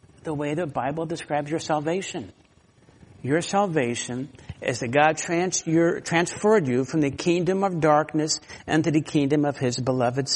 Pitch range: 150-195 Hz